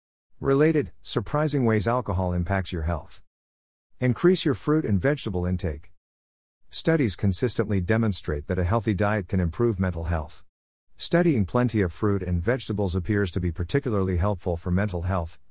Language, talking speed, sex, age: English, 145 wpm, male, 50-69